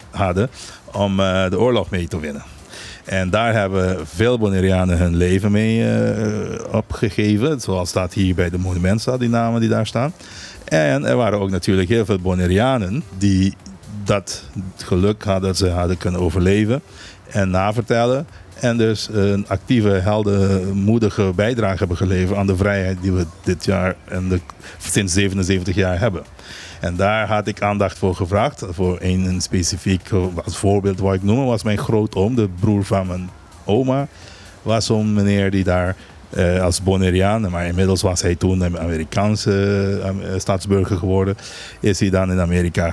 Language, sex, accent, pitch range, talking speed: Dutch, male, Dutch, 90-105 Hz, 155 wpm